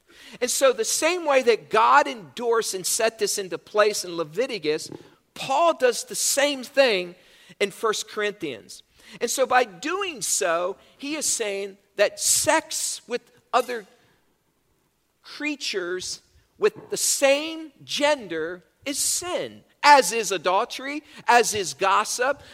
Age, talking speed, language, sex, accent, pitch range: 50-69, 130 wpm, English, male, American, 180-285 Hz